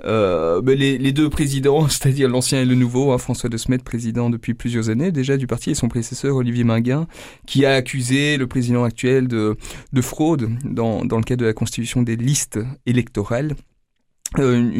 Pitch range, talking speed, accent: 120-145 Hz, 190 wpm, French